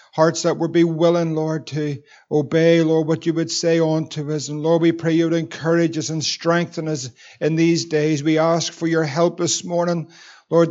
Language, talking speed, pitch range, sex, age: English, 205 wpm, 160-175 Hz, male, 50-69